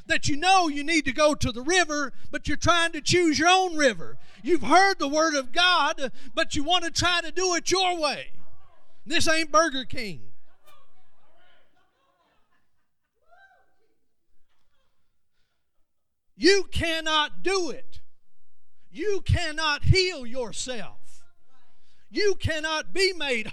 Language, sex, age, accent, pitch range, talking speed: English, male, 40-59, American, 200-325 Hz, 130 wpm